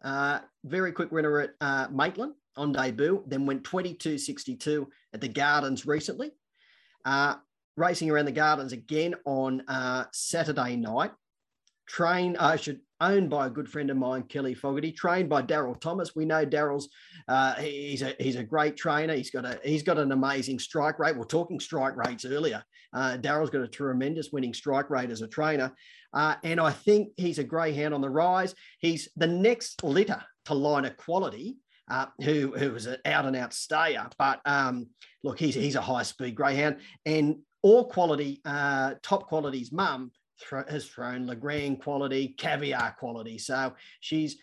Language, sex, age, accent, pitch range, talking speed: English, male, 30-49, Australian, 135-160 Hz, 175 wpm